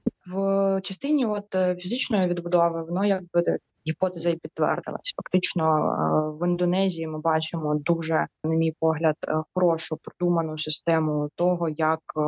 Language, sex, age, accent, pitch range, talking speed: Ukrainian, female, 20-39, native, 160-190 Hz, 120 wpm